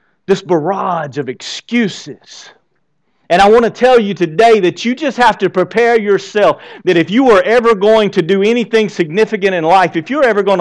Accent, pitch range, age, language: American, 155-200 Hz, 40-59, English